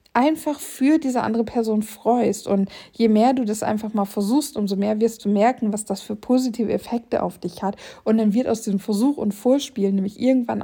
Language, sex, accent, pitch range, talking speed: German, female, German, 215-265 Hz, 210 wpm